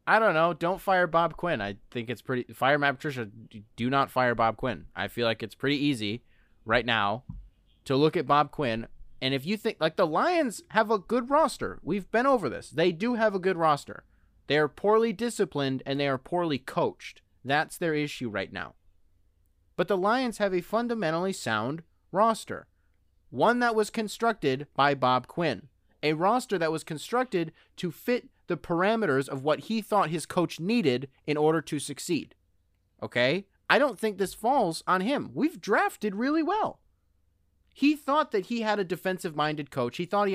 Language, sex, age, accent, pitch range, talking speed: English, male, 20-39, American, 125-200 Hz, 185 wpm